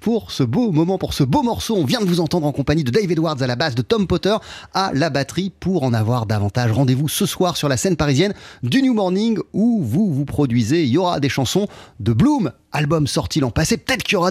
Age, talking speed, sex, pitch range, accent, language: 30-49, 250 wpm, male, 125-195 Hz, French, French